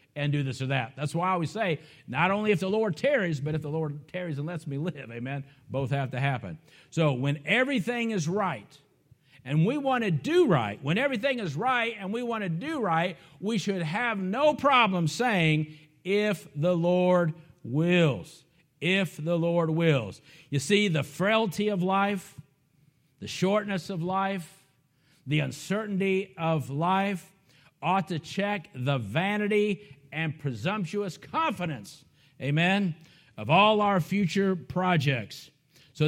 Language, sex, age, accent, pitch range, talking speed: English, male, 50-69, American, 145-200 Hz, 155 wpm